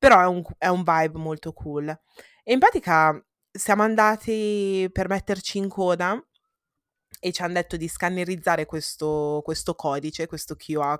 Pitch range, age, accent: 150-180 Hz, 20-39, native